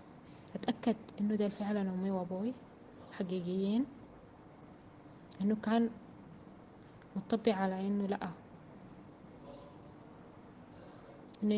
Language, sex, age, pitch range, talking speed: Arabic, female, 20-39, 185-225 Hz, 75 wpm